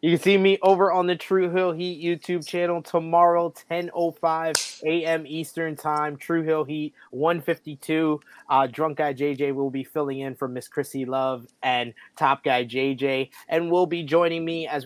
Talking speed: 175 wpm